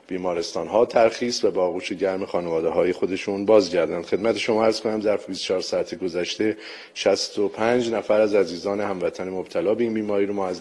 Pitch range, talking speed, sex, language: 100-125 Hz, 170 wpm, male, Persian